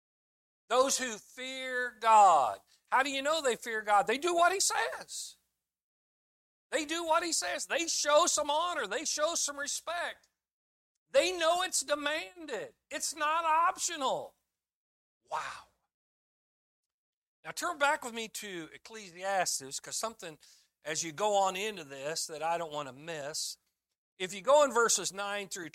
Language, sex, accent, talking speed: English, male, American, 150 wpm